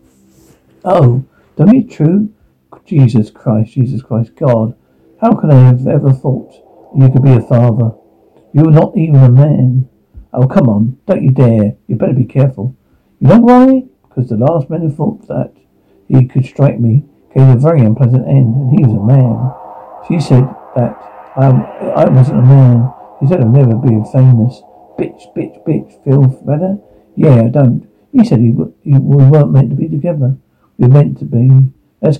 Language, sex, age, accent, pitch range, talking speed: English, male, 60-79, British, 120-150 Hz, 185 wpm